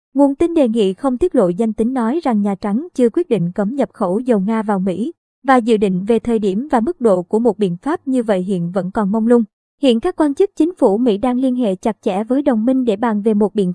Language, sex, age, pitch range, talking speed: Vietnamese, male, 20-39, 215-255 Hz, 275 wpm